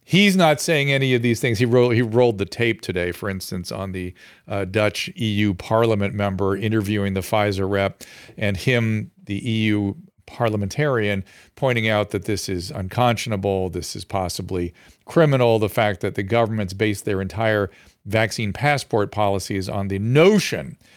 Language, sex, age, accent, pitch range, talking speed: English, male, 40-59, American, 100-130 Hz, 155 wpm